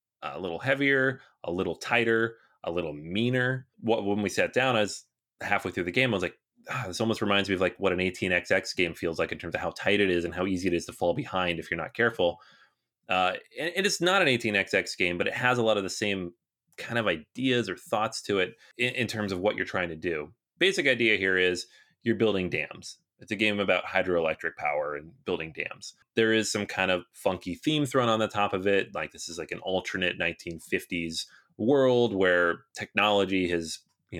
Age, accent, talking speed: 30-49, American, 220 wpm